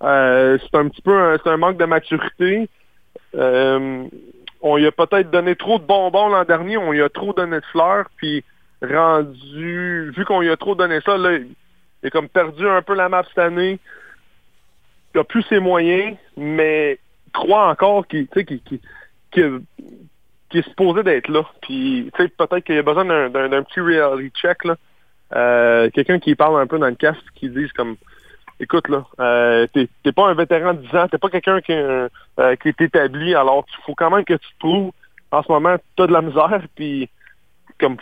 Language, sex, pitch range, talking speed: French, male, 140-185 Hz, 205 wpm